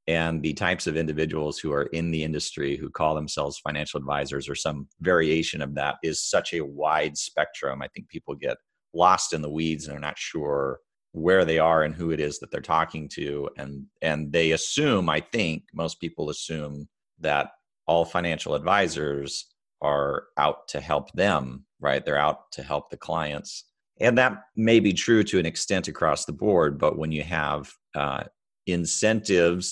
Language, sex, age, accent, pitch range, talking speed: English, male, 30-49, American, 70-80 Hz, 185 wpm